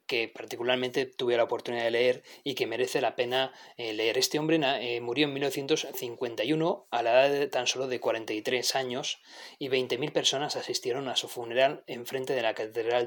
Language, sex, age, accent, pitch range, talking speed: Spanish, male, 20-39, Spanish, 125-160 Hz, 180 wpm